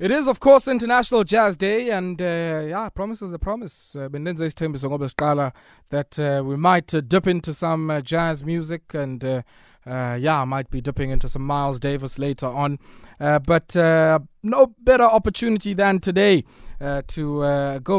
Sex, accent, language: male, South African, English